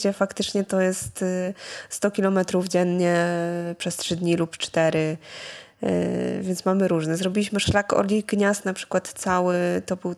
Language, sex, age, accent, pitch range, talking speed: Polish, female, 20-39, native, 175-215 Hz, 140 wpm